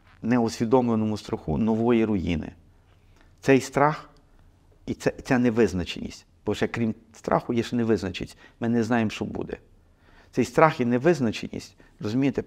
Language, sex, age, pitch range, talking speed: Ukrainian, male, 50-69, 100-125 Hz, 125 wpm